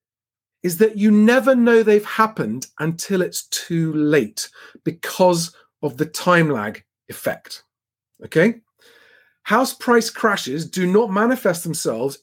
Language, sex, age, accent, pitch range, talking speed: English, male, 40-59, British, 150-195 Hz, 125 wpm